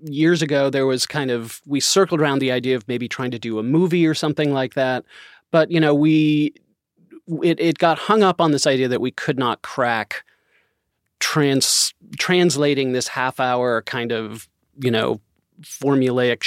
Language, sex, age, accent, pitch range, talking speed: English, male, 30-49, American, 120-150 Hz, 180 wpm